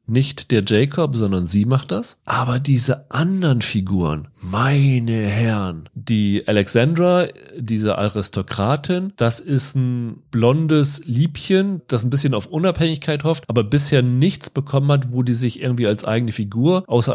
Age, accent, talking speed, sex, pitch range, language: 40-59, German, 145 wpm, male, 110-145 Hz, German